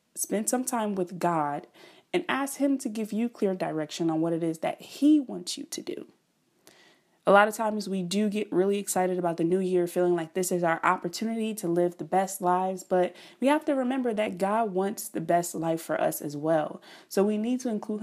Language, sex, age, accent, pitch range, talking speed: English, female, 20-39, American, 160-215 Hz, 225 wpm